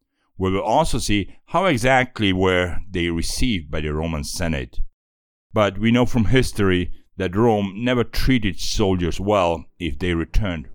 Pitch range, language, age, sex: 80-100 Hz, Chinese, 60-79, male